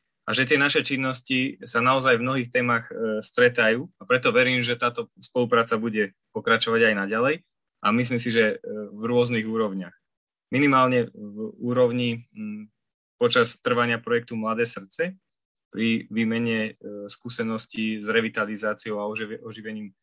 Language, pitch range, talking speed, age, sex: Slovak, 105-120 Hz, 130 wpm, 20-39, male